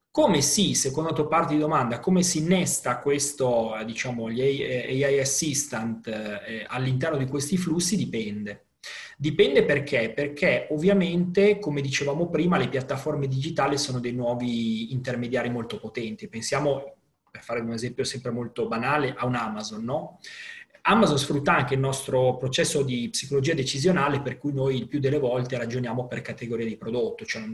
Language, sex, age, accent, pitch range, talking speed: Italian, male, 30-49, native, 120-150 Hz, 155 wpm